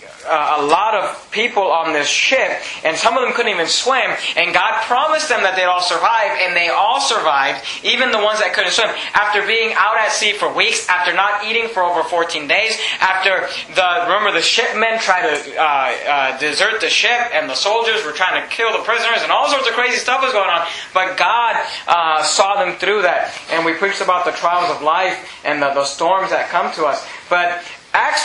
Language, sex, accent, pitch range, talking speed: English, male, American, 175-240 Hz, 215 wpm